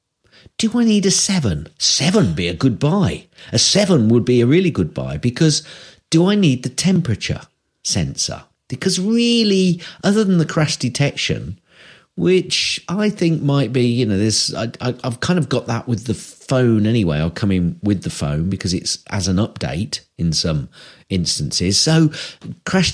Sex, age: male, 40-59